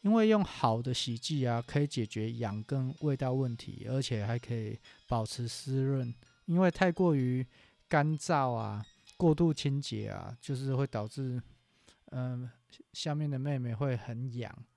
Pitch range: 120-145 Hz